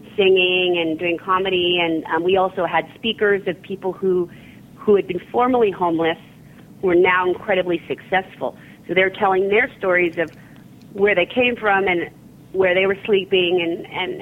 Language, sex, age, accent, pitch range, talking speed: English, female, 30-49, American, 175-200 Hz, 170 wpm